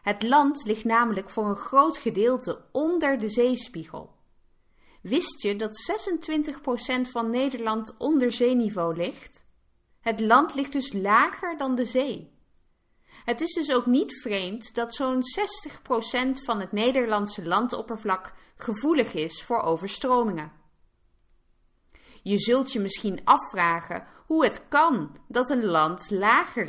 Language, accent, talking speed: English, Dutch, 130 wpm